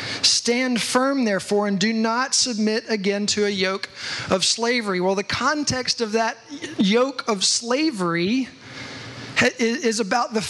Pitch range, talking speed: 200-245 Hz, 135 wpm